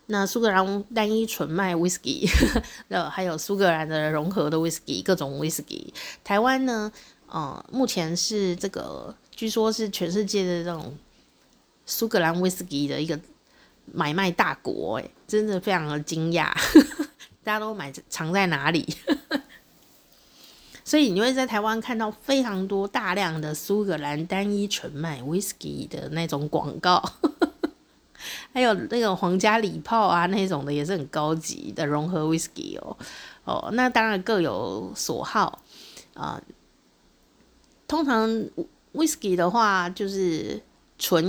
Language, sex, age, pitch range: Chinese, female, 30-49, 160-225 Hz